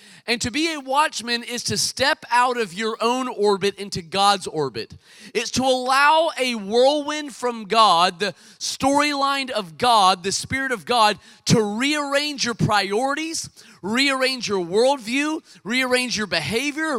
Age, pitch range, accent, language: 30-49, 205-265 Hz, American, English